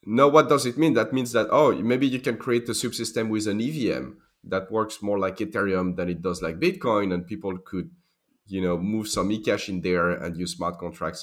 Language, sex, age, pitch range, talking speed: English, male, 30-49, 90-120 Hz, 225 wpm